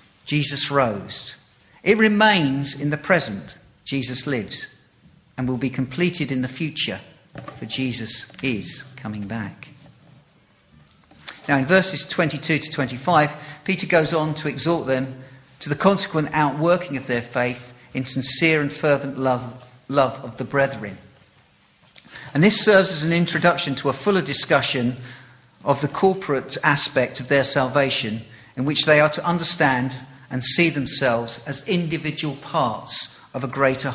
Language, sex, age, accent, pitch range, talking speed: English, male, 50-69, British, 130-155 Hz, 145 wpm